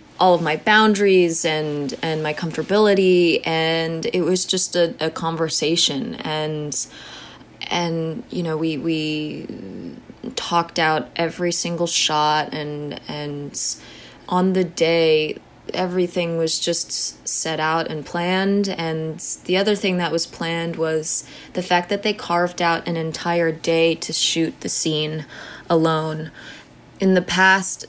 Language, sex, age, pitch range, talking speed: English, female, 20-39, 155-180 Hz, 135 wpm